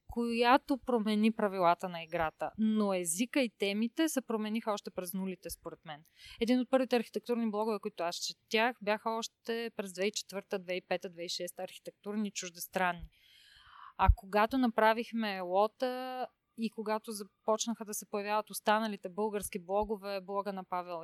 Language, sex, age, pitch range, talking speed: Bulgarian, female, 30-49, 185-235 Hz, 130 wpm